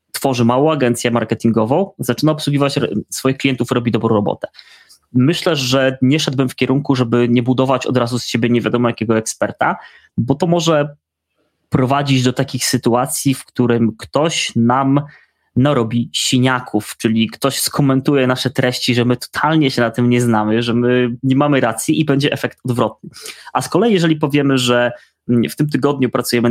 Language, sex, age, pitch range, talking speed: Polish, male, 20-39, 120-135 Hz, 165 wpm